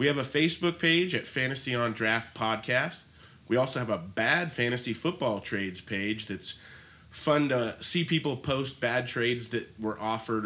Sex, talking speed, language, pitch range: male, 170 wpm, English, 110-140 Hz